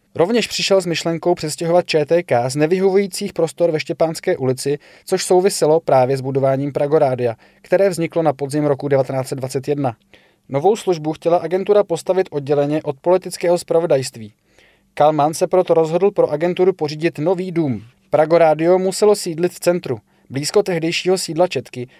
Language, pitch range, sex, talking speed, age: Czech, 145-180 Hz, male, 140 wpm, 20-39